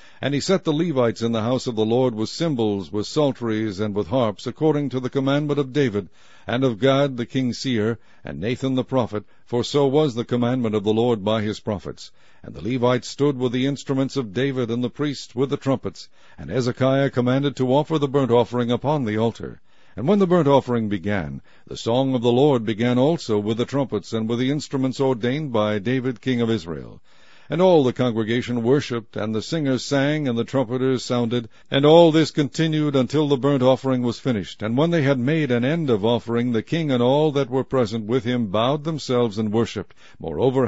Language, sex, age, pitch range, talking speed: English, male, 60-79, 115-140 Hz, 210 wpm